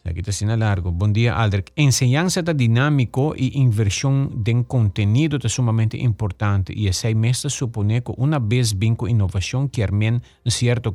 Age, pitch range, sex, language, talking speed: 50-69, 105-130 Hz, male, English, 185 wpm